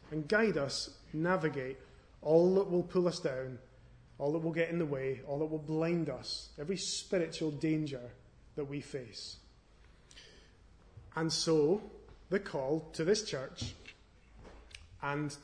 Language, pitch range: English, 100-170 Hz